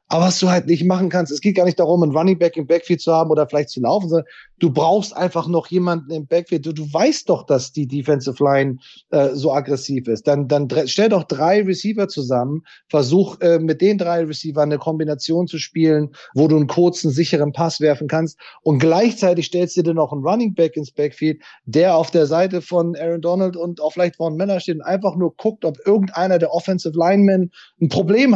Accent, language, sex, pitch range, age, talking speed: German, German, male, 145-175 Hz, 30-49, 220 wpm